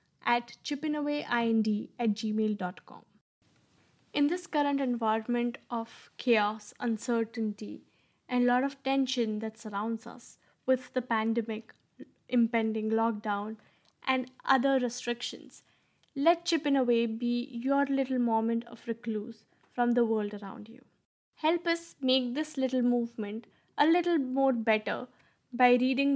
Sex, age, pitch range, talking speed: female, 10-29, 225-265 Hz, 120 wpm